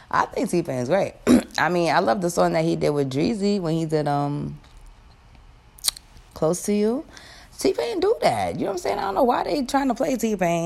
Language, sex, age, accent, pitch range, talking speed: English, female, 20-39, American, 125-195 Hz, 240 wpm